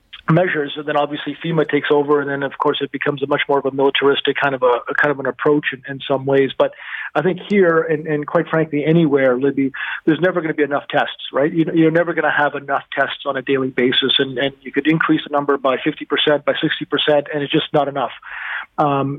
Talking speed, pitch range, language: 255 wpm, 140-155 Hz, English